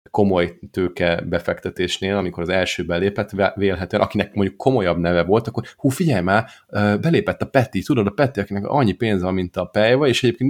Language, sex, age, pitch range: Hungarian, male, 30-49, 90-110 Hz